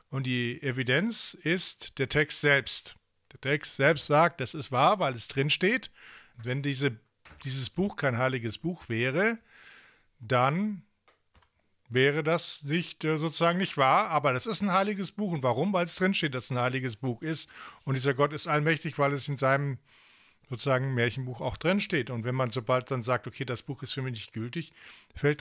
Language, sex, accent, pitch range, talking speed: English, male, German, 130-160 Hz, 185 wpm